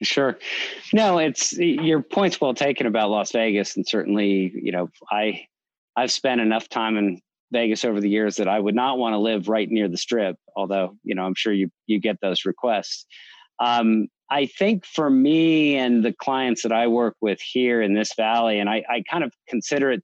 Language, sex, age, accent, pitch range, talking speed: English, male, 40-59, American, 105-125 Hz, 205 wpm